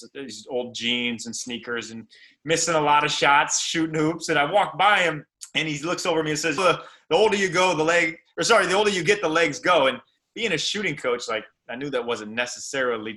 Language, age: English, 30-49